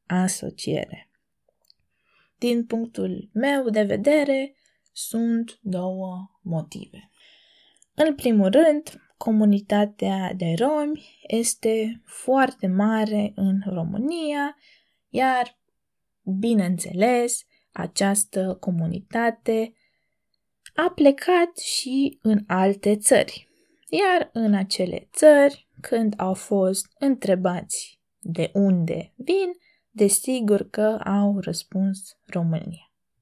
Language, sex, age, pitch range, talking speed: Romanian, female, 20-39, 190-265 Hz, 80 wpm